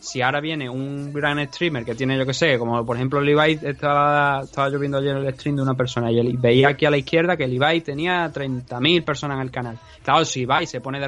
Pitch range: 125-155 Hz